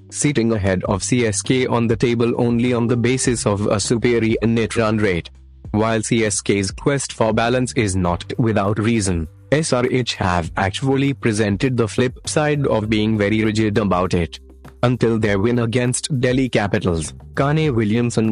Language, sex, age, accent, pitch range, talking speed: Hindi, male, 30-49, native, 105-125 Hz, 155 wpm